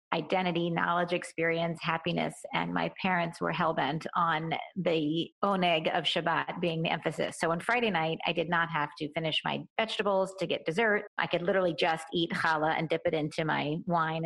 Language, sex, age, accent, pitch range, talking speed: English, female, 30-49, American, 170-205 Hz, 185 wpm